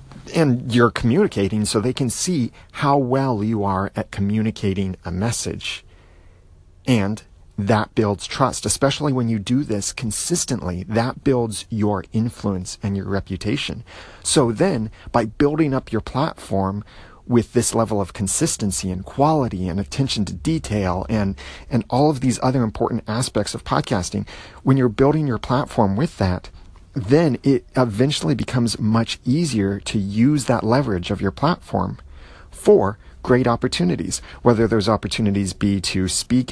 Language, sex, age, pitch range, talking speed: English, male, 40-59, 95-120 Hz, 145 wpm